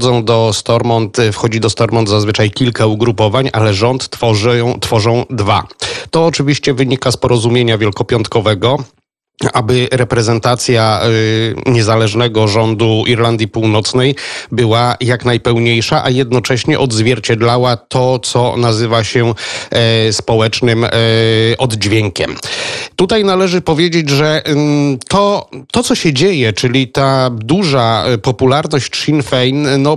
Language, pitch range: Polish, 110-130 Hz